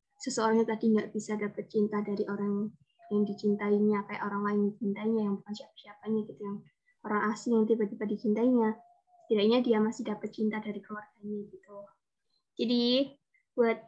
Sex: female